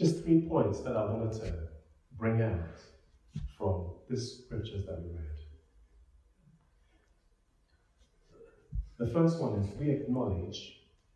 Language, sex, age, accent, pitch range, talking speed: English, male, 30-49, British, 80-125 Hz, 115 wpm